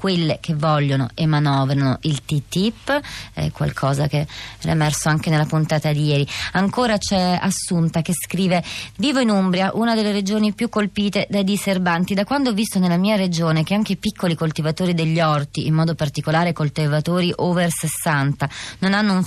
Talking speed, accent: 170 wpm, native